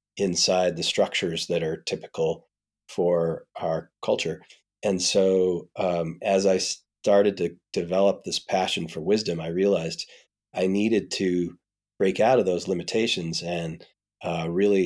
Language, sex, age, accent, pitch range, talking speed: English, male, 30-49, American, 85-95 Hz, 135 wpm